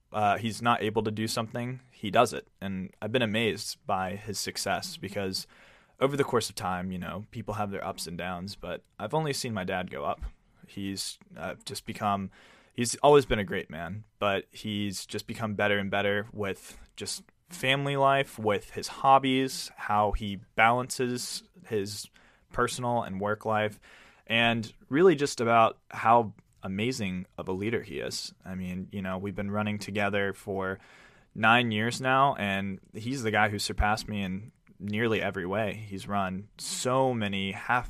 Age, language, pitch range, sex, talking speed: 20-39, English, 100-120 Hz, male, 175 wpm